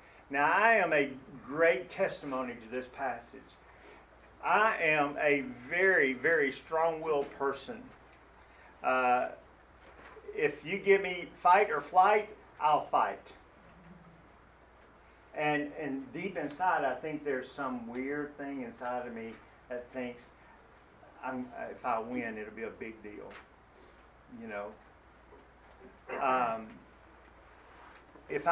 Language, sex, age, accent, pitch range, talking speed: English, male, 50-69, American, 110-150 Hz, 110 wpm